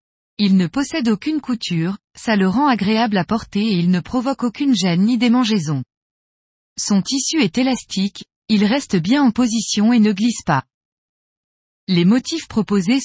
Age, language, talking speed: 20-39, French, 160 wpm